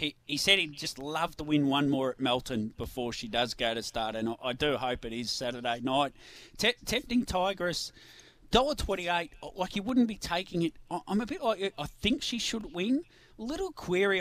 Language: English